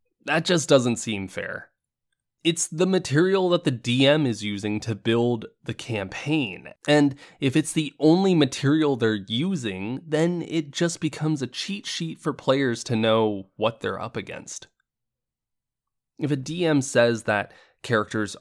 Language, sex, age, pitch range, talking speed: English, male, 20-39, 105-150 Hz, 150 wpm